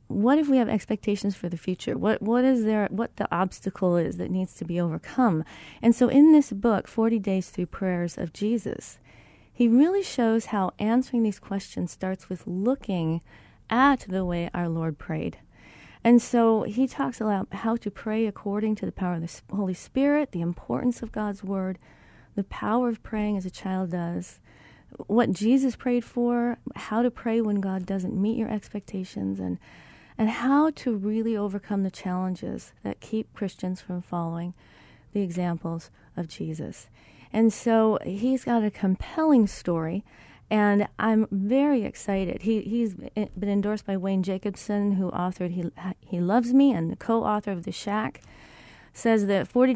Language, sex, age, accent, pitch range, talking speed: English, female, 40-59, American, 185-225 Hz, 170 wpm